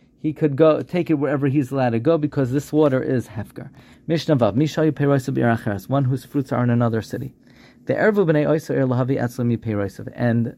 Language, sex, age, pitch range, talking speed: English, male, 40-59, 120-150 Hz, 175 wpm